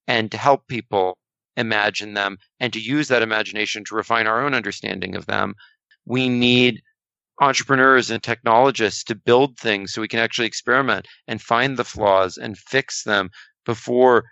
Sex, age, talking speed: male, 40-59, 165 wpm